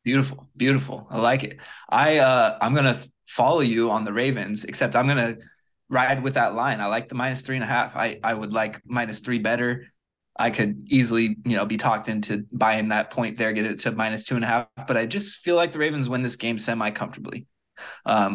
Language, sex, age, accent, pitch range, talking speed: English, male, 20-39, American, 110-135 Hz, 230 wpm